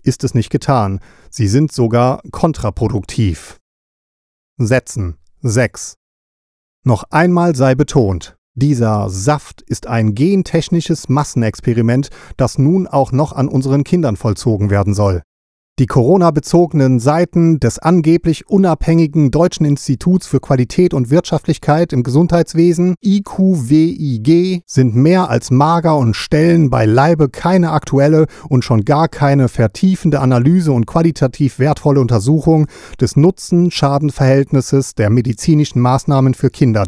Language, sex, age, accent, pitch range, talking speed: German, male, 40-59, German, 120-160 Hz, 120 wpm